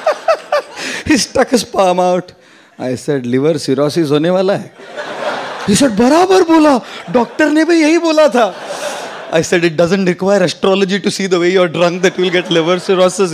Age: 30-49